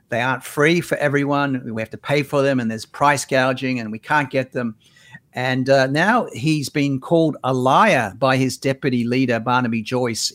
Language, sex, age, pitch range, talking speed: English, male, 50-69, 120-140 Hz, 195 wpm